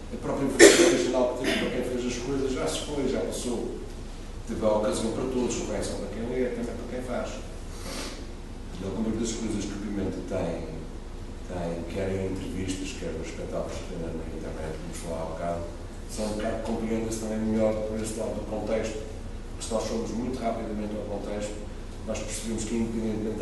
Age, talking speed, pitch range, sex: 40-59, 195 wpm, 95-115 Hz, male